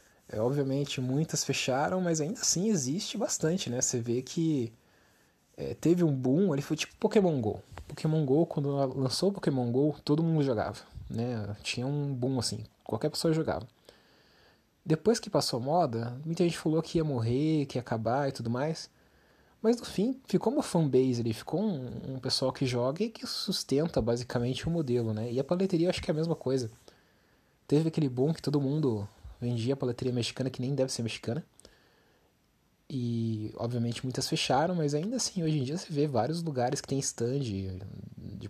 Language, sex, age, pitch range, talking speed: Portuguese, male, 20-39, 115-155 Hz, 185 wpm